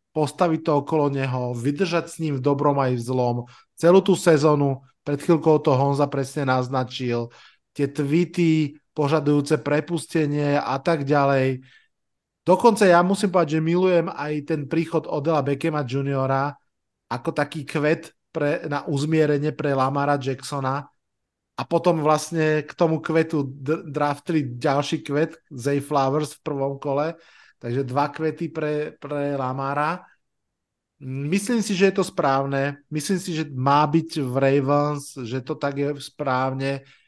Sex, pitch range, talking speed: male, 135-155 Hz, 140 wpm